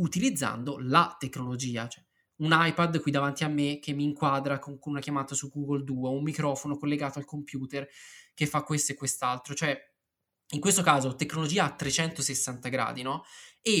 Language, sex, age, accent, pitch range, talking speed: Italian, male, 20-39, native, 135-160 Hz, 160 wpm